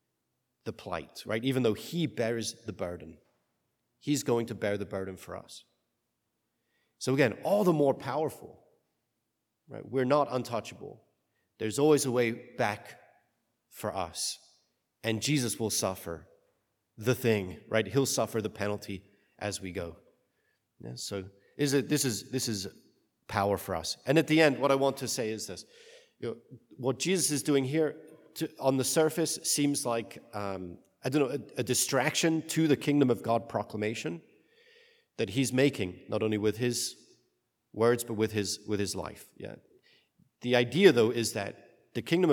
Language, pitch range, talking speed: English, 105-145 Hz, 165 wpm